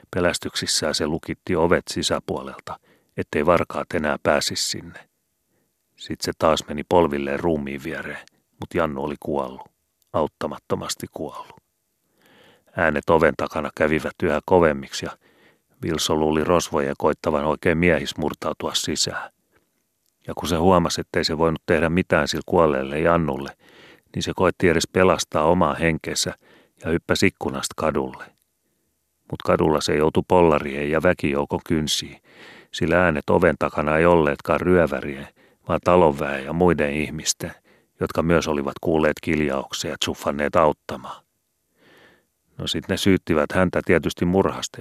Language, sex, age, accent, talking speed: Finnish, male, 40-59, native, 130 wpm